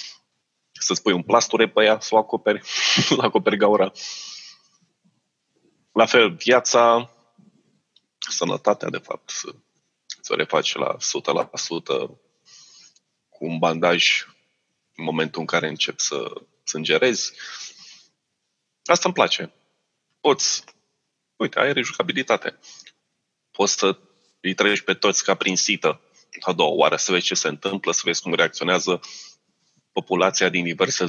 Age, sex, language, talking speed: 20-39, male, Romanian, 125 wpm